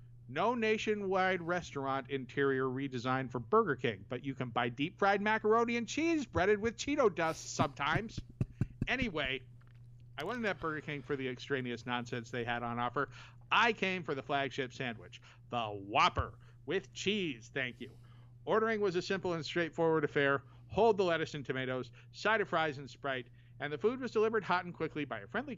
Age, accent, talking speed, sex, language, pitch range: 50-69, American, 175 wpm, male, English, 120-170 Hz